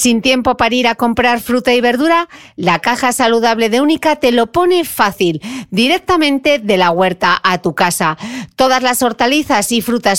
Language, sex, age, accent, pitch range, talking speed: Spanish, female, 40-59, Spanish, 200-275 Hz, 175 wpm